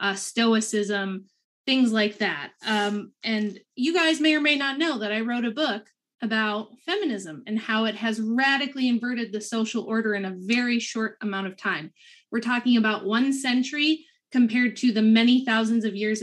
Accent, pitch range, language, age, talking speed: American, 210-250 Hz, English, 20-39, 180 wpm